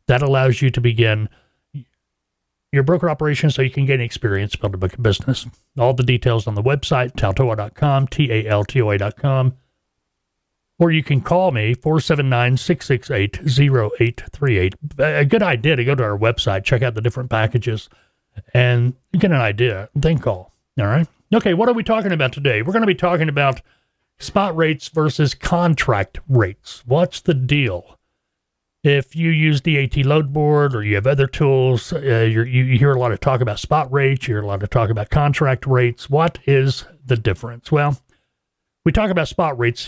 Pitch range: 110-145 Hz